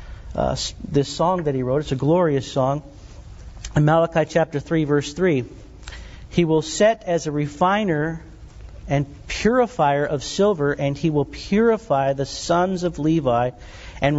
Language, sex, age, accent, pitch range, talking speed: English, male, 50-69, American, 130-165 Hz, 150 wpm